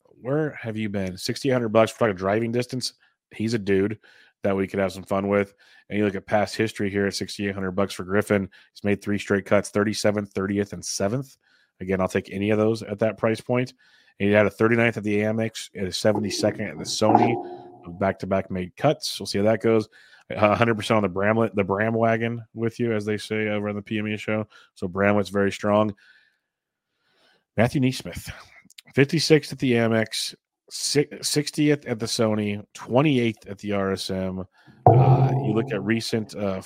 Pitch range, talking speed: 100-115 Hz, 190 wpm